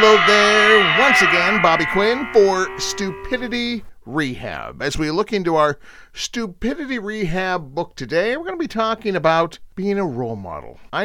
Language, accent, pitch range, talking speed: English, American, 150-240 Hz, 155 wpm